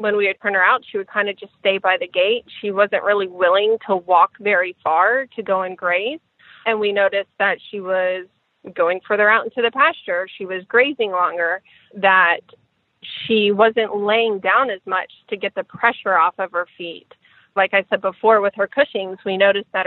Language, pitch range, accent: English, 190-220 Hz, American